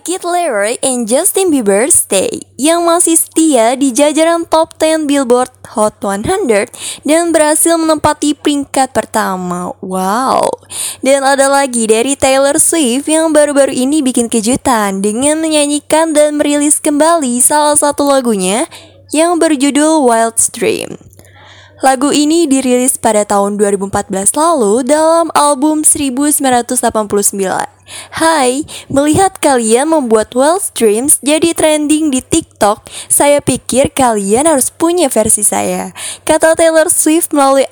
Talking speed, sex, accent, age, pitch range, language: 120 wpm, female, native, 10-29, 245-315 Hz, Indonesian